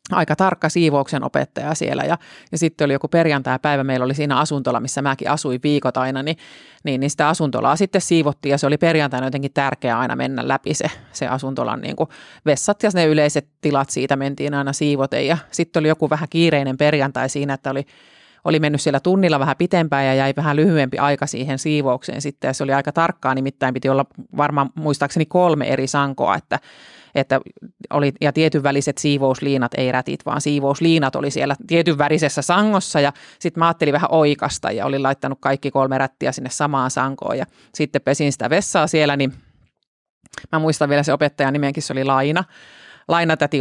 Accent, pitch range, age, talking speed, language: native, 135-165 Hz, 30-49, 180 wpm, Finnish